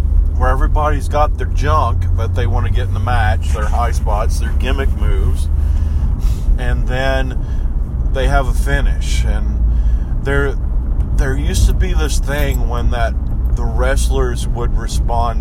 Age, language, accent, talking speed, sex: 40-59, English, American, 150 wpm, male